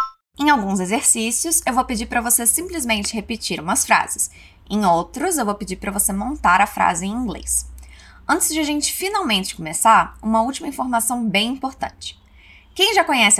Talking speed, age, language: 170 wpm, 20-39, Portuguese